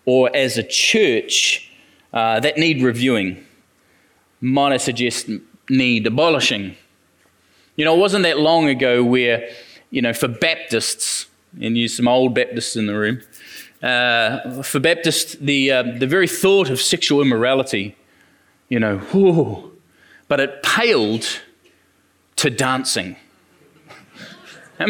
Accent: Australian